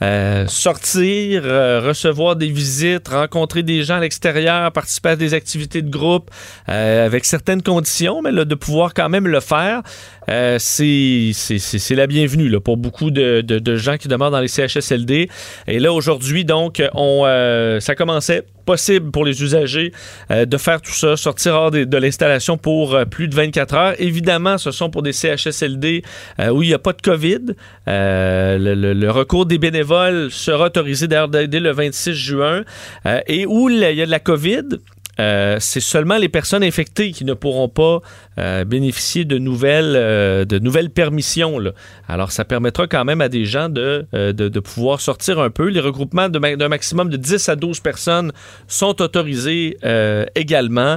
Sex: male